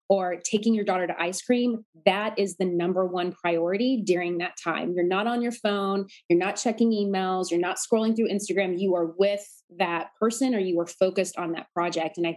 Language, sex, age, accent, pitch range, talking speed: English, female, 20-39, American, 180-235 Hz, 215 wpm